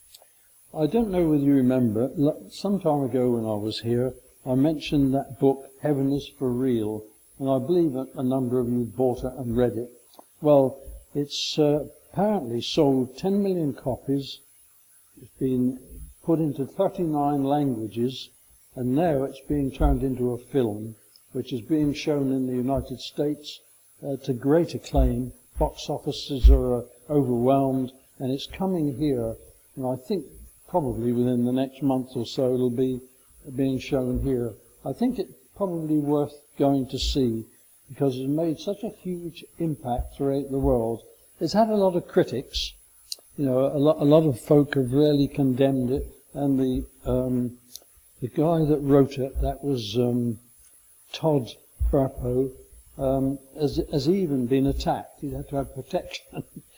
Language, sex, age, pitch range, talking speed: English, male, 60-79, 125-145 Hz, 160 wpm